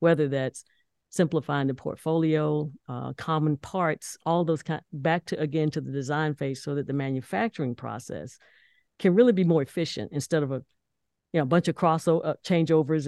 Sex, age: female, 50-69